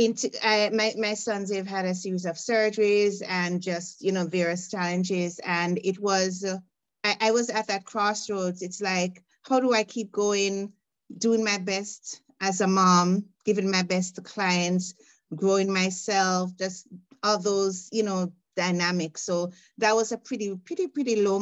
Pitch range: 180-210 Hz